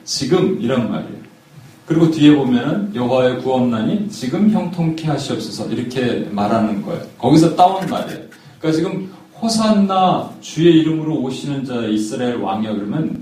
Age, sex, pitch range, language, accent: 40-59, male, 125-185 Hz, Korean, native